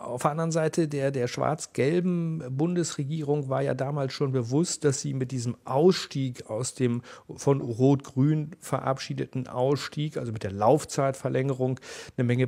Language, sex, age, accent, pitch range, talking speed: German, male, 40-59, German, 120-135 Hz, 145 wpm